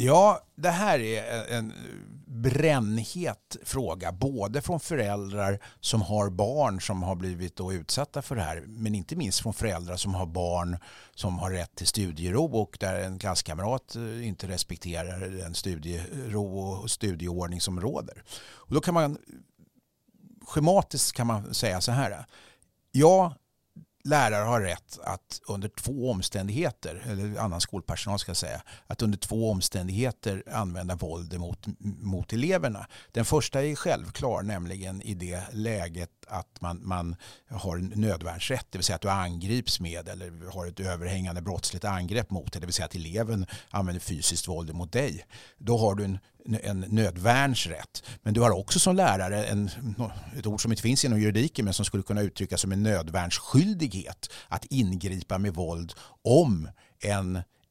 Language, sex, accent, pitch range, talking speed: Swedish, male, native, 90-115 Hz, 155 wpm